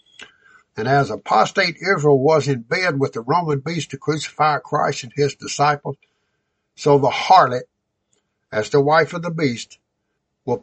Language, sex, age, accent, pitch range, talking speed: English, male, 60-79, American, 135-170 Hz, 150 wpm